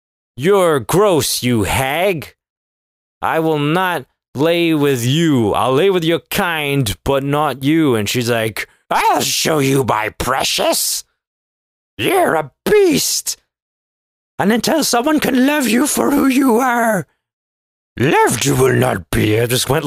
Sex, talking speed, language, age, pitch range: male, 140 wpm, English, 30-49, 110-175 Hz